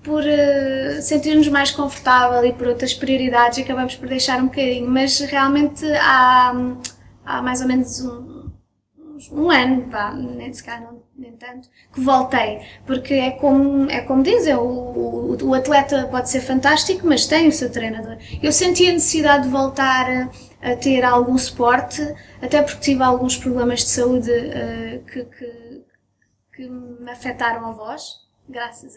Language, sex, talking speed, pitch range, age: Portuguese, female, 150 wpm, 245-280 Hz, 20-39